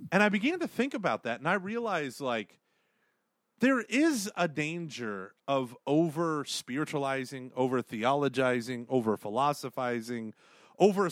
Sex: male